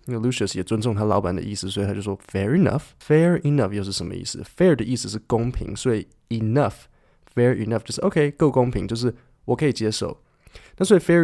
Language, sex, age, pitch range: Chinese, male, 20-39, 105-125 Hz